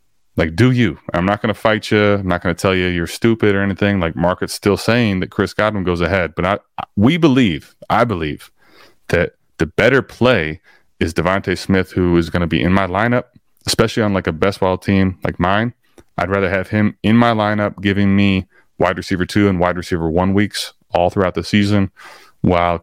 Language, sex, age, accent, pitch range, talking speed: English, male, 30-49, American, 90-110 Hz, 210 wpm